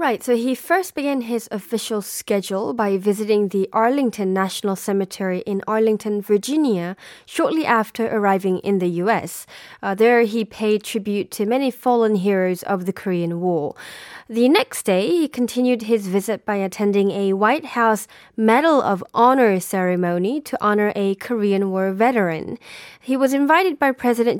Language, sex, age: Korean, female, 20-39